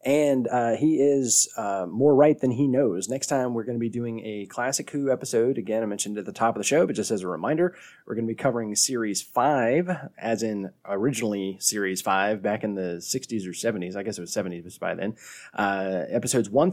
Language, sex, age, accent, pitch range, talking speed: English, male, 20-39, American, 105-135 Hz, 225 wpm